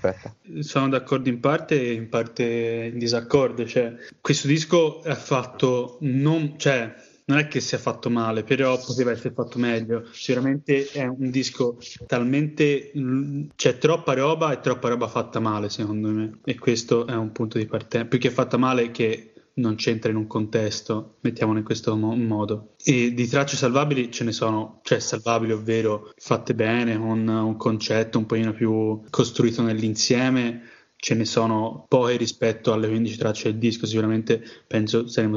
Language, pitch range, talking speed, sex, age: Italian, 110-130 Hz, 170 wpm, male, 20-39